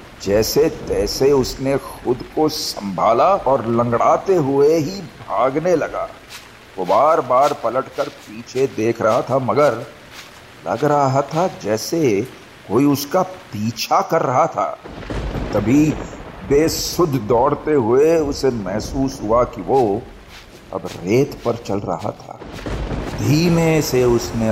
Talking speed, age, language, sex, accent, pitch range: 115 wpm, 50-69, Hindi, male, native, 115-160 Hz